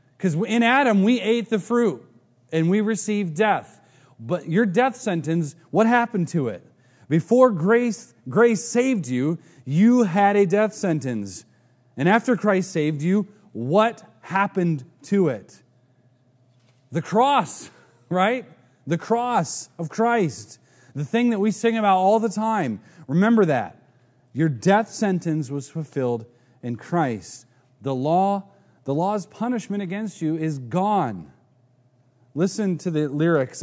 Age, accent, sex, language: 30-49, American, male, English